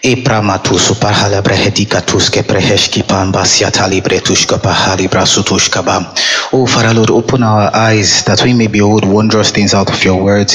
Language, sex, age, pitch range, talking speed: English, male, 20-39, 95-115 Hz, 75 wpm